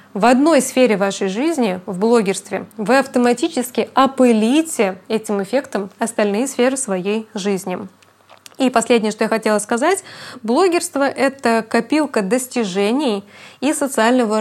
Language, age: Russian, 20-39